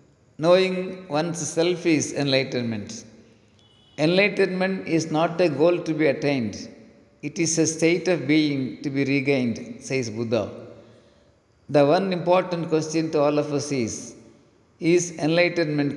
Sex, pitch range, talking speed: male, 130-165 Hz, 130 wpm